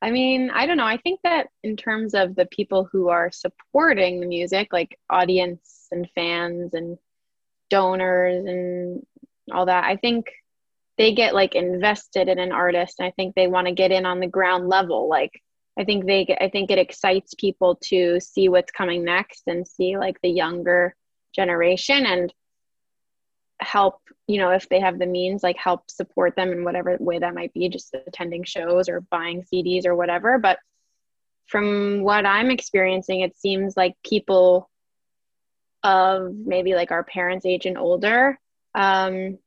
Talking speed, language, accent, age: 175 wpm, English, American, 20-39